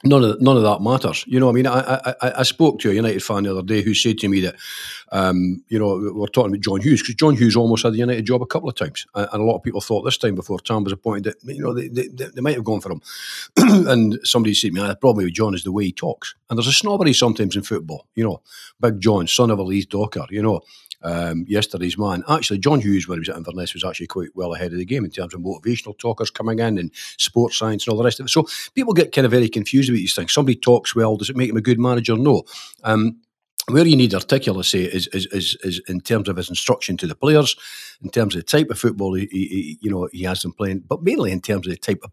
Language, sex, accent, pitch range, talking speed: English, male, British, 100-125 Hz, 280 wpm